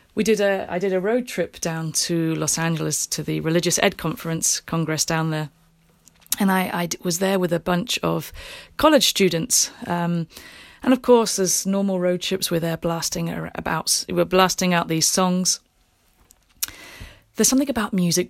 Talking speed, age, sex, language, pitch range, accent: 170 wpm, 30-49, female, English, 165-230 Hz, British